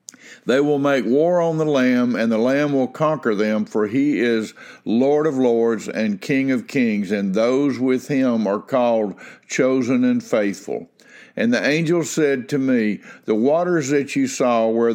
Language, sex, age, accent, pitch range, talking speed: English, male, 60-79, American, 115-145 Hz, 175 wpm